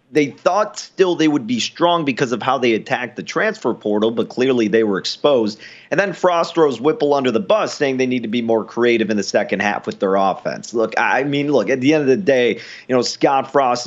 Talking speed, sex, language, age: 240 wpm, male, English, 30-49